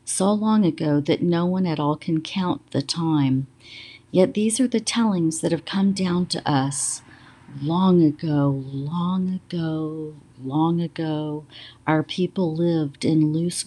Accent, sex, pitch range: American, female, 135-175 Hz